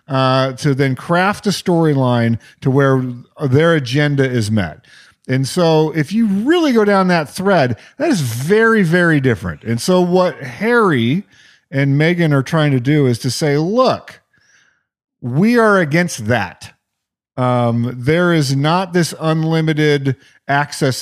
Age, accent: 40-59, American